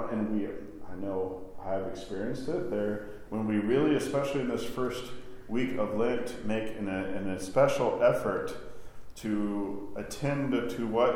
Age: 40-59